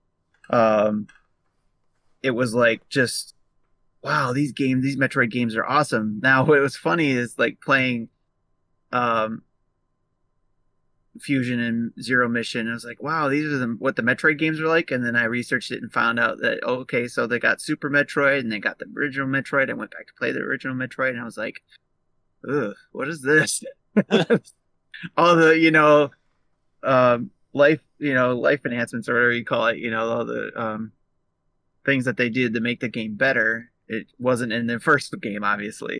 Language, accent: English, American